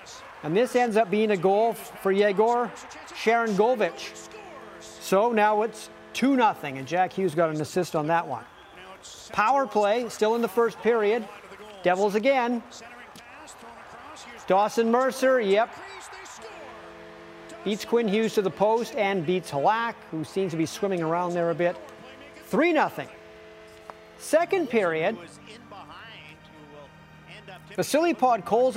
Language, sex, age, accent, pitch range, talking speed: English, male, 50-69, American, 175-235 Hz, 125 wpm